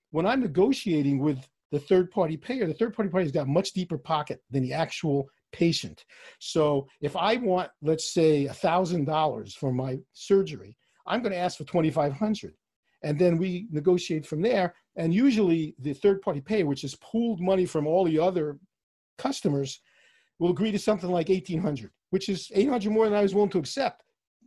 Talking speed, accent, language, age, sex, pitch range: 175 wpm, American, English, 50-69, male, 150-200 Hz